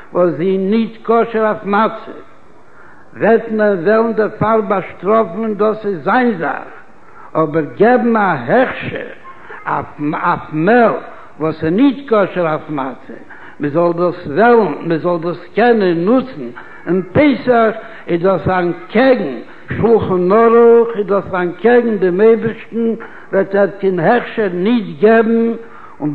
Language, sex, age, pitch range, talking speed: Hebrew, male, 70-89, 180-230 Hz, 85 wpm